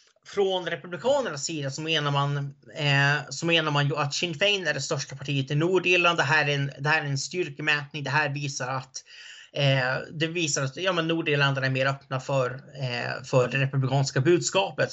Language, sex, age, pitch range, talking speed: Swedish, male, 30-49, 140-185 Hz, 185 wpm